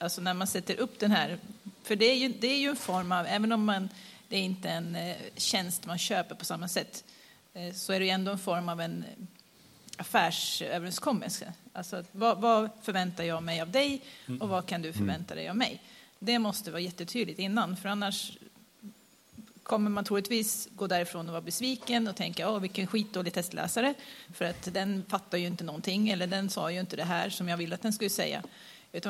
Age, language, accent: 40-59, Swedish, native